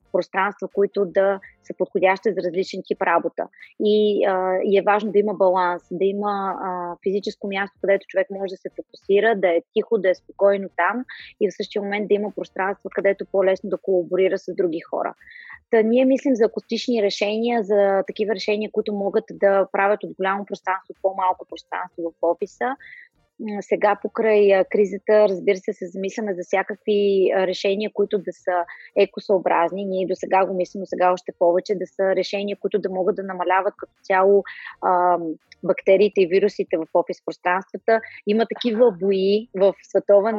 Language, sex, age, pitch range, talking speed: Bulgarian, female, 20-39, 190-210 Hz, 170 wpm